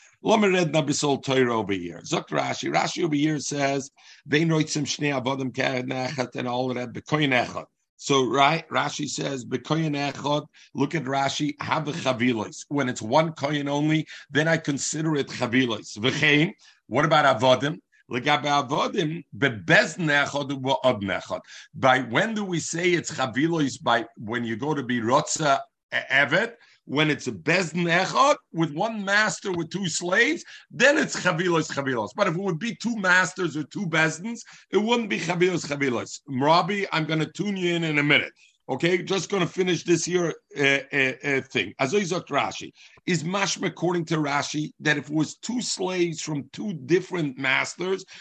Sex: male